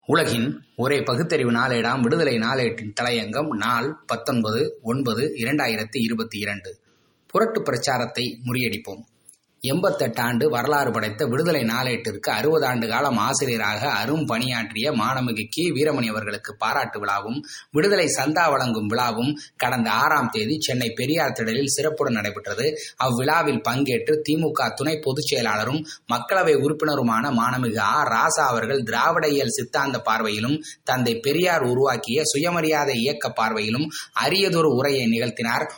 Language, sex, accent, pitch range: Tamil, male, native, 120-160 Hz